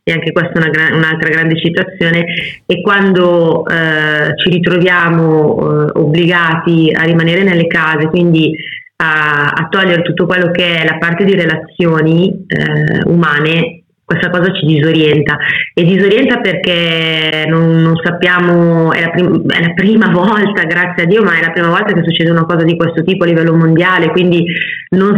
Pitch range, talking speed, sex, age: 165-195 Hz, 165 wpm, female, 30-49